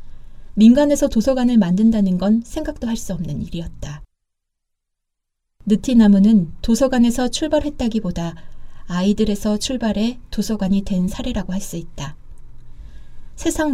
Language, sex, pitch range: Korean, female, 185-235 Hz